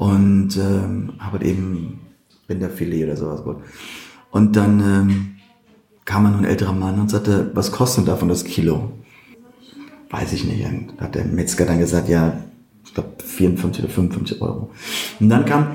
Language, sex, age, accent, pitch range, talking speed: German, male, 40-59, German, 100-130 Hz, 155 wpm